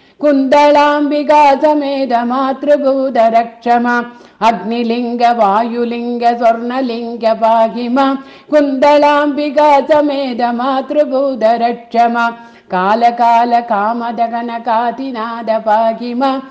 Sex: female